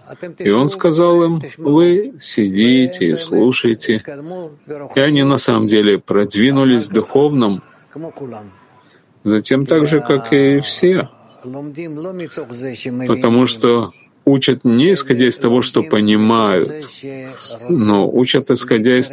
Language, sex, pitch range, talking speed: Russian, male, 110-140 Hz, 105 wpm